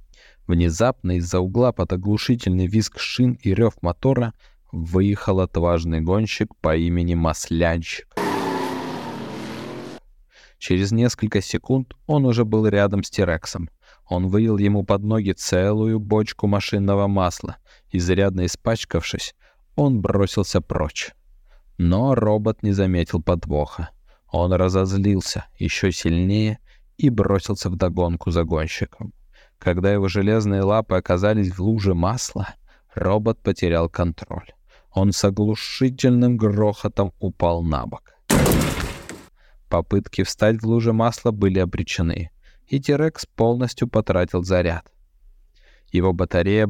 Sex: male